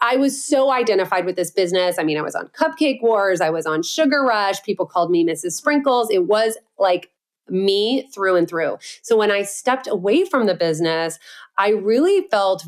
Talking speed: 200 wpm